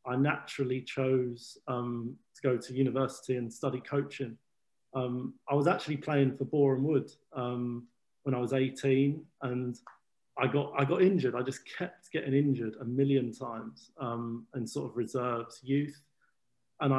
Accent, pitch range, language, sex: British, 130-145 Hz, English, male